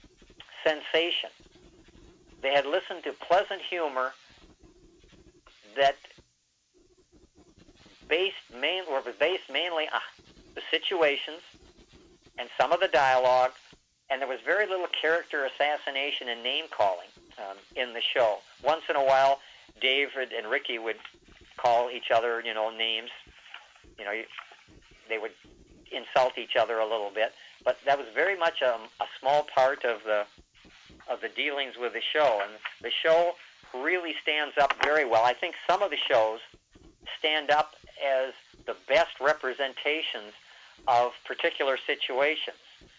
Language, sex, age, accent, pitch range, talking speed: English, male, 50-69, American, 120-155 Hz, 140 wpm